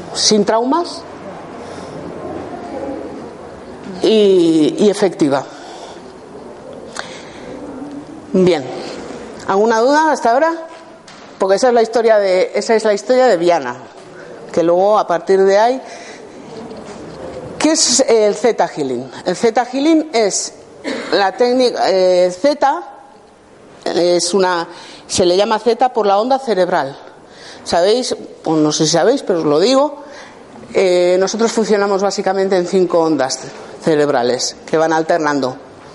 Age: 50-69